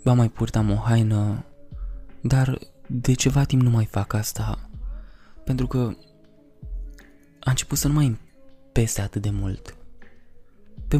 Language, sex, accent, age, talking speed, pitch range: Romanian, male, native, 20-39, 135 wpm, 100-125 Hz